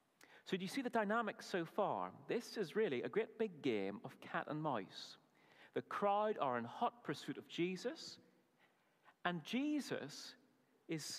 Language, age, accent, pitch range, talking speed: English, 30-49, British, 135-220 Hz, 160 wpm